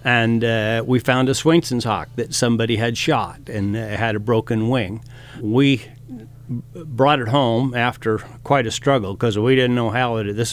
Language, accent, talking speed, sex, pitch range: English, American, 195 wpm, male, 110-130 Hz